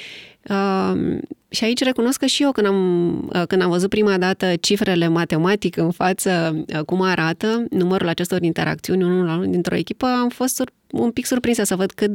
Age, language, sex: 20-39, English, female